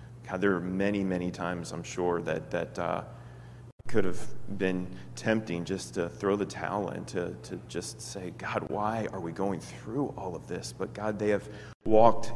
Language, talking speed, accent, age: English, 190 wpm, American, 30-49